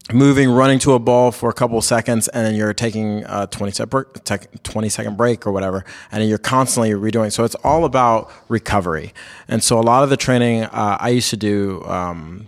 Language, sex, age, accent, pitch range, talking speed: English, male, 30-49, American, 100-115 Hz, 200 wpm